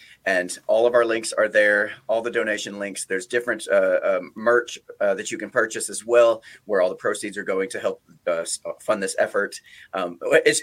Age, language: 30-49, English